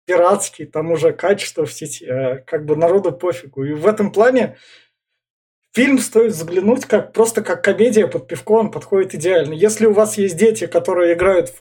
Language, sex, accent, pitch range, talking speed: Russian, male, native, 170-220 Hz, 175 wpm